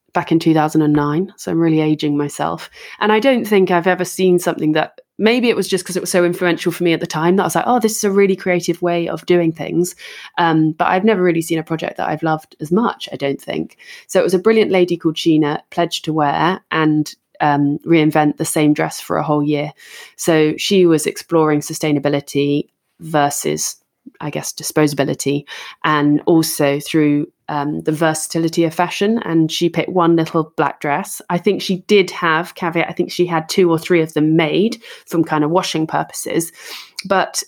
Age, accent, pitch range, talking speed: 20-39, British, 150-175 Hz, 205 wpm